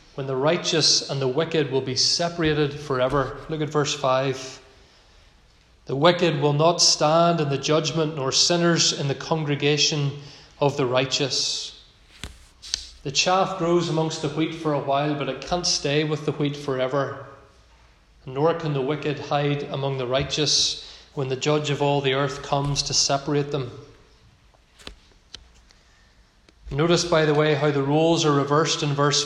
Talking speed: 160 wpm